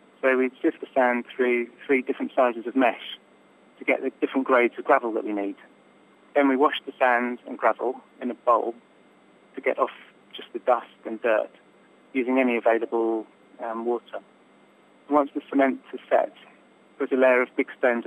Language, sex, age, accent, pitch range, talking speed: English, male, 30-49, British, 115-130 Hz, 185 wpm